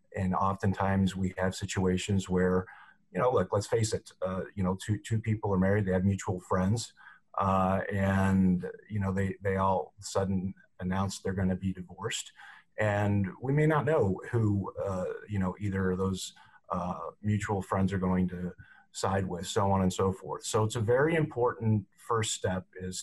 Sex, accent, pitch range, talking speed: male, American, 95-115 Hz, 185 wpm